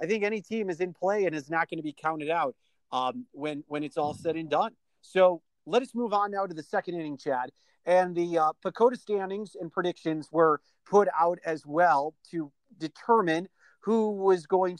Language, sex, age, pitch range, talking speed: English, male, 40-59, 155-195 Hz, 205 wpm